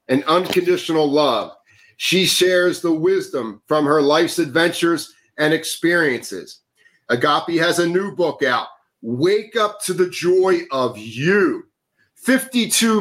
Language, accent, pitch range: English, American, 145-185 Hz